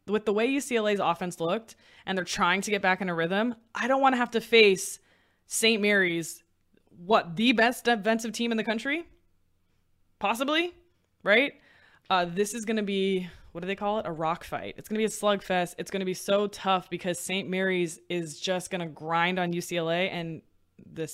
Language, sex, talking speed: English, female, 205 wpm